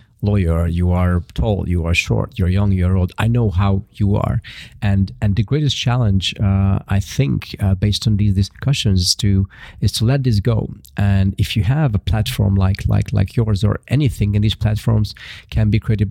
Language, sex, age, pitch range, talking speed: Hungarian, male, 40-59, 100-115 Hz, 200 wpm